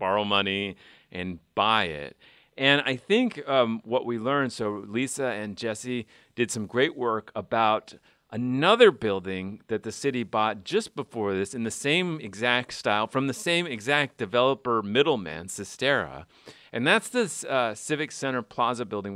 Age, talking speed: 40-59, 155 wpm